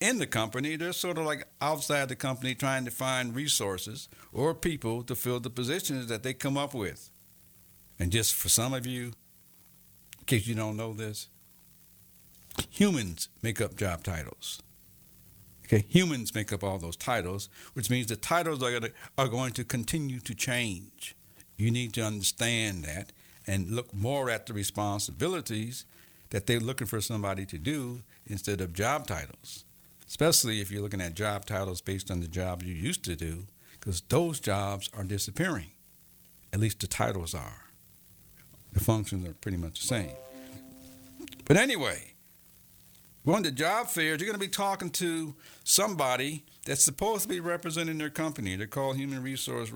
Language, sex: English, male